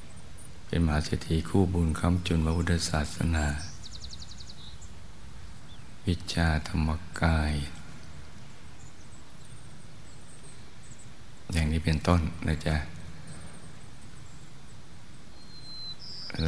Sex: male